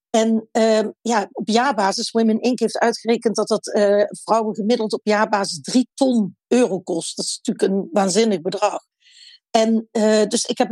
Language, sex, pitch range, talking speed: Dutch, female, 210-250 Hz, 175 wpm